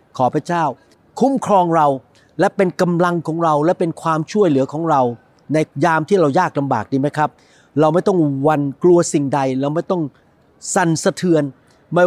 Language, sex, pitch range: Thai, male, 150-195 Hz